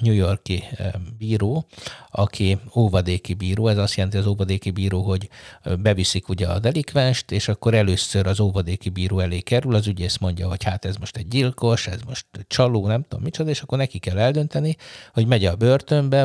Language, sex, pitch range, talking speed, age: Hungarian, male, 95-120 Hz, 180 wpm, 60-79